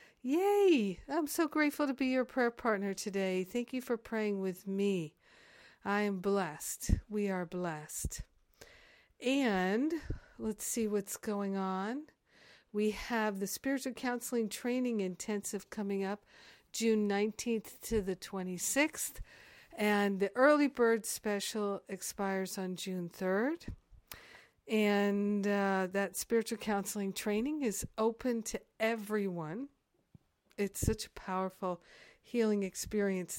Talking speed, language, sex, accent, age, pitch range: 120 wpm, English, female, American, 50-69, 190-230 Hz